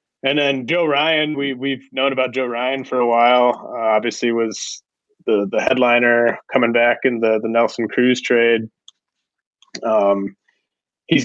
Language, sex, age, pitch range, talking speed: English, male, 20-39, 115-135 Hz, 155 wpm